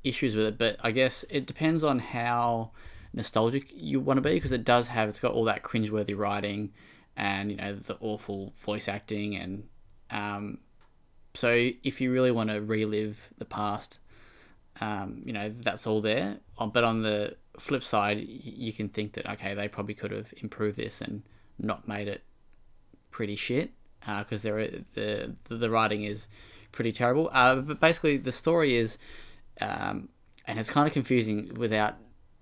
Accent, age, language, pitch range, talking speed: Australian, 10-29, English, 105-120 Hz, 170 wpm